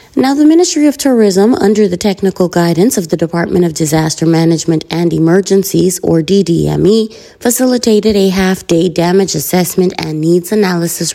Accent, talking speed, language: American, 145 wpm, English